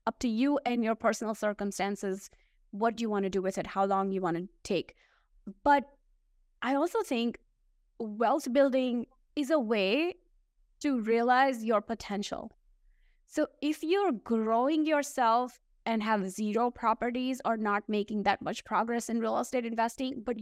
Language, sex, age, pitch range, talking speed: English, female, 20-39, 230-285 Hz, 160 wpm